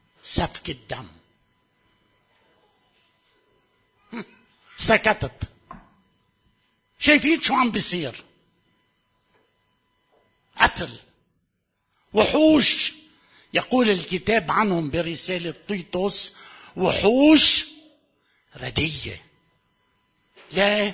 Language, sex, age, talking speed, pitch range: Arabic, male, 60-79, 50 wpm, 150-235 Hz